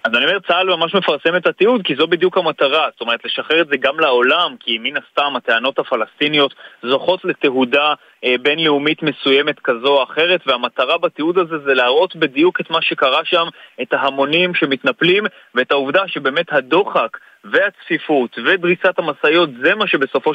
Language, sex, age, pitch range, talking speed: Hebrew, male, 30-49, 140-185 Hz, 160 wpm